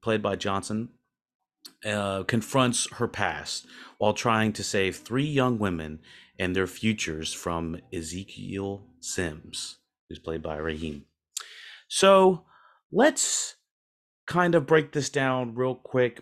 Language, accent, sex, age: English, American, male, 30-49